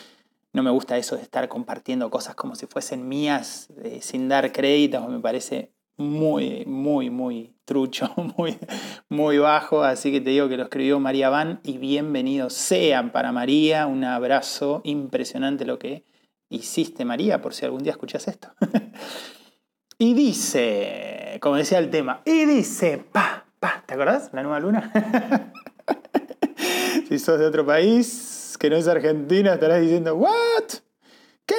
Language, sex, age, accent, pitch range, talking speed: Spanish, male, 20-39, Argentinian, 150-250 Hz, 155 wpm